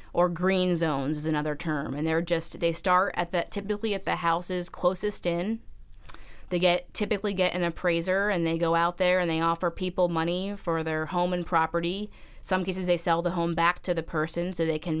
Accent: American